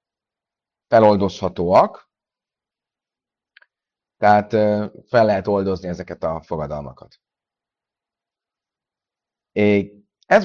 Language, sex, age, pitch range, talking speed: Hungarian, male, 30-49, 105-155 Hz, 55 wpm